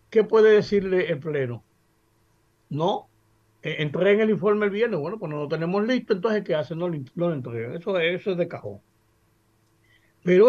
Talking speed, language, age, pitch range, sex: 170 wpm, Spanish, 60-79, 120-175 Hz, male